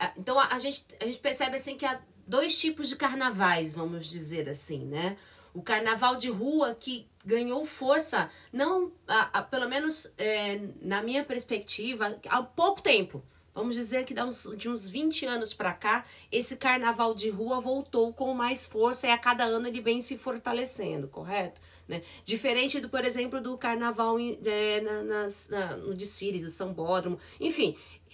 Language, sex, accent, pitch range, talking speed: Portuguese, female, Brazilian, 195-255 Hz, 175 wpm